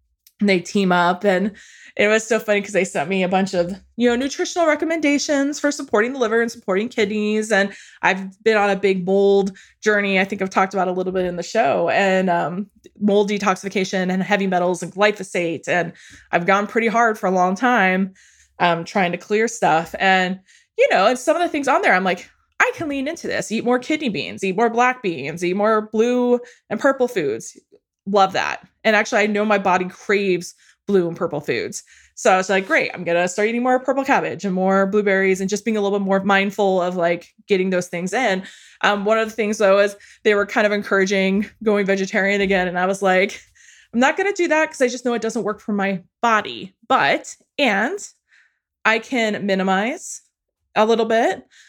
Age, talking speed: 20-39, 215 wpm